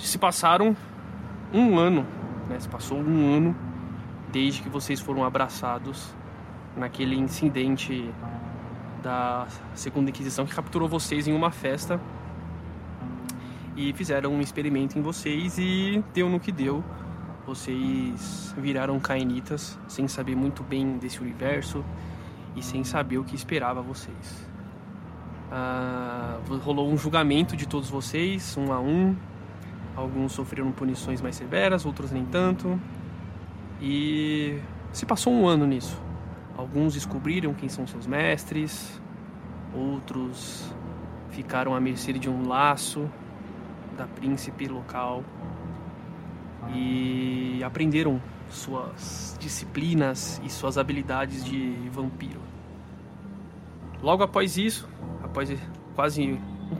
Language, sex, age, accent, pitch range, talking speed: Portuguese, male, 20-39, Brazilian, 120-150 Hz, 110 wpm